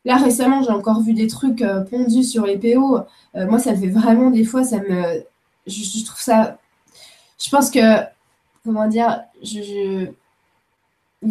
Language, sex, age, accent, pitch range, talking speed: French, female, 20-39, French, 210-255 Hz, 170 wpm